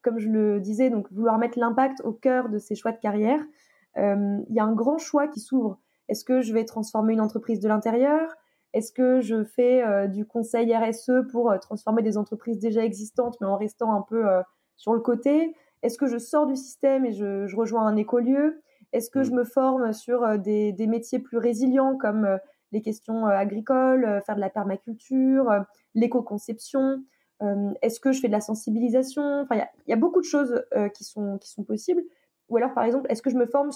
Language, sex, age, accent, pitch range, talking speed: French, female, 20-39, French, 215-265 Hz, 220 wpm